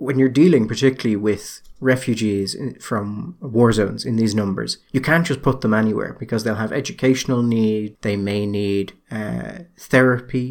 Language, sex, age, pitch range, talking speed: English, male, 30-49, 105-130 Hz, 160 wpm